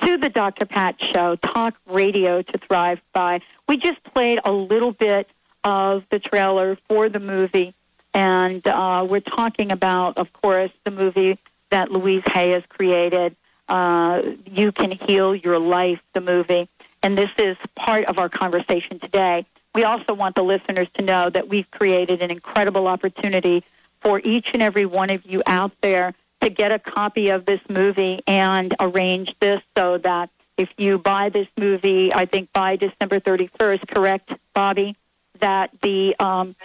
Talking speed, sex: 165 wpm, female